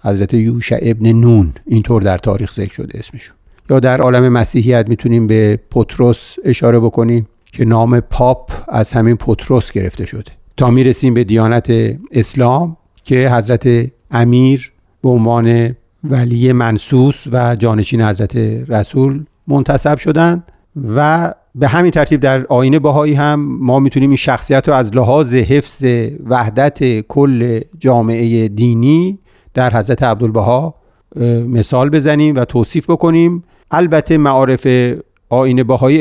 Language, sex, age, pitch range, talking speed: Persian, male, 50-69, 115-135 Hz, 130 wpm